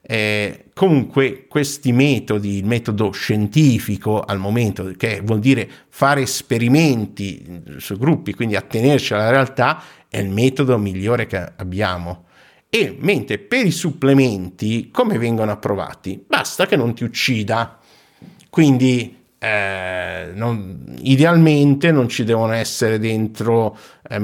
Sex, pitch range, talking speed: male, 105-135 Hz, 120 wpm